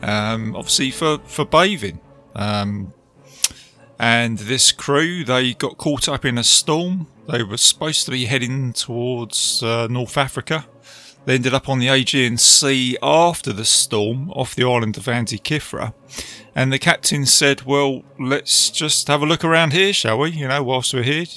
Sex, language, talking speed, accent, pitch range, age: male, English, 170 wpm, British, 110-140 Hz, 30-49